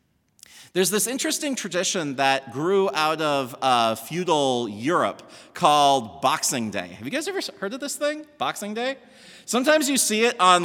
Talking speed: 165 wpm